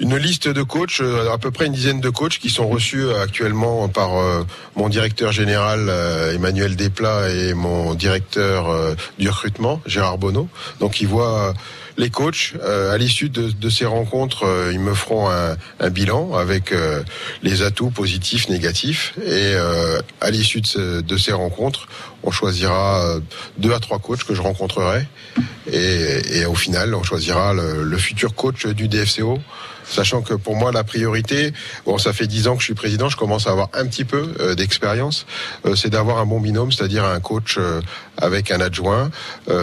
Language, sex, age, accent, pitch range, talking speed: French, male, 40-59, French, 95-115 Hz, 165 wpm